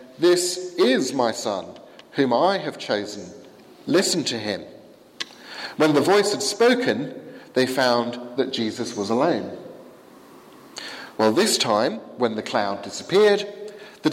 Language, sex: English, male